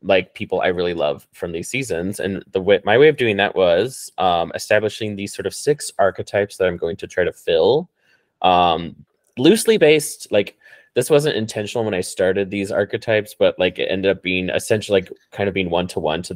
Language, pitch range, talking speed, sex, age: English, 100-125 Hz, 210 wpm, male, 20-39